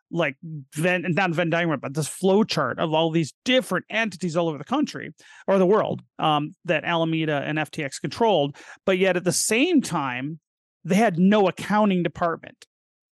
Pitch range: 165-210 Hz